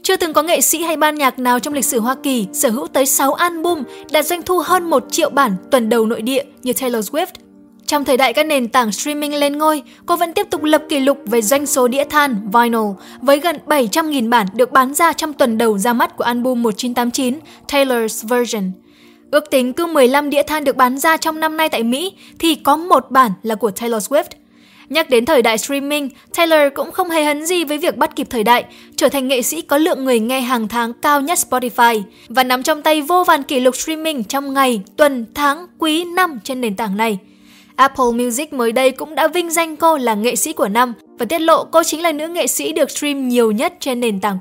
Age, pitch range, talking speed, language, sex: 10-29, 245-315 Hz, 235 wpm, Vietnamese, female